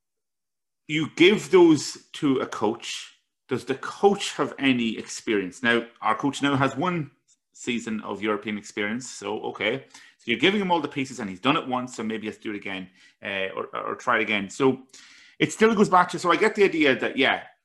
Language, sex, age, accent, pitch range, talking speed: English, male, 30-49, British, 110-175 Hz, 205 wpm